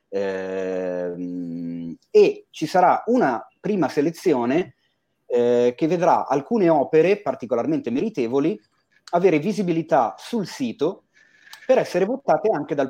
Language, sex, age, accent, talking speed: Italian, male, 30-49, native, 105 wpm